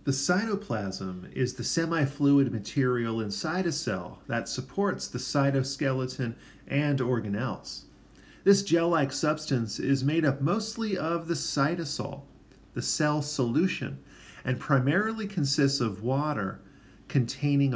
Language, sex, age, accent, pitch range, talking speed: English, male, 40-59, American, 120-150 Hz, 115 wpm